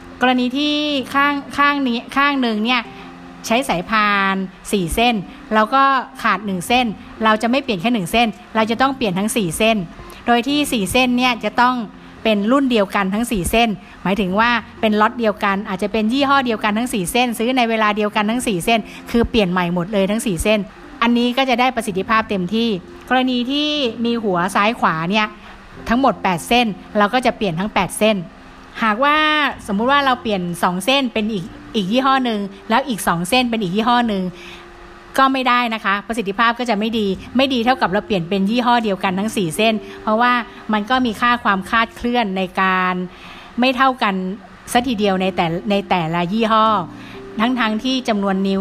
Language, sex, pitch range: Thai, female, 195-240 Hz